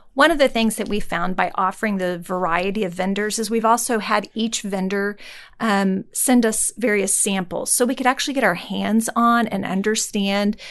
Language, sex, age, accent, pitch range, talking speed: English, female, 40-59, American, 195-230 Hz, 190 wpm